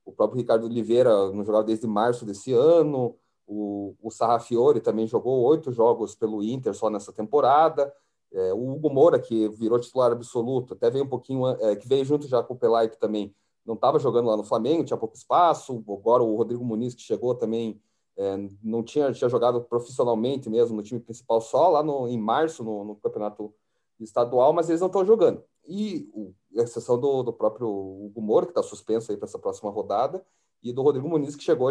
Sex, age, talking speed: male, 30-49, 200 wpm